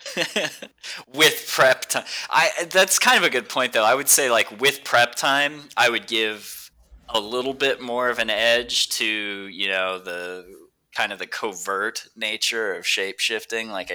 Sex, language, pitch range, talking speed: male, English, 95-135 Hz, 170 wpm